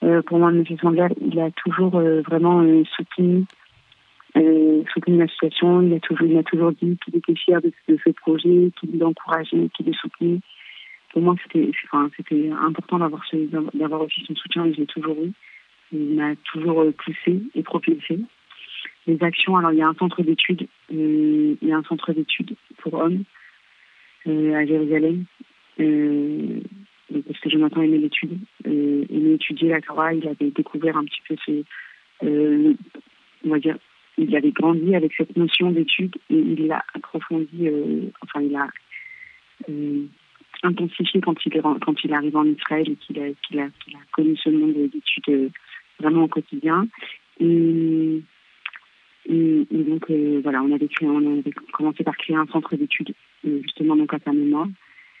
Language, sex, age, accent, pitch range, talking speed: French, female, 40-59, French, 155-190 Hz, 180 wpm